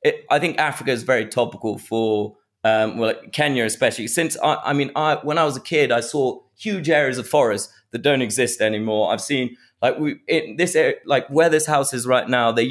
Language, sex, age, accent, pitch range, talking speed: English, male, 30-49, British, 120-145 Hz, 220 wpm